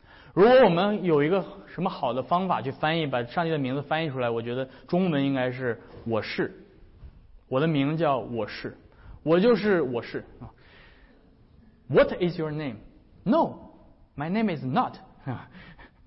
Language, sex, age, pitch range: Chinese, male, 20-39, 120-165 Hz